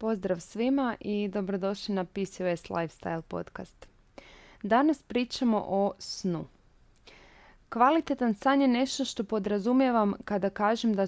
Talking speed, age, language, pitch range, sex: 115 wpm, 20-39, Croatian, 180-230 Hz, female